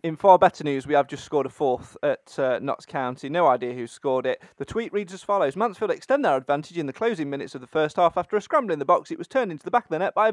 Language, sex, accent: English, male, British